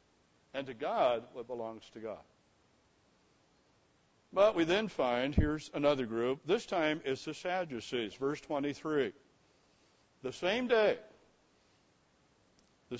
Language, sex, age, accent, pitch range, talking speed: English, male, 60-79, American, 145-200 Hz, 115 wpm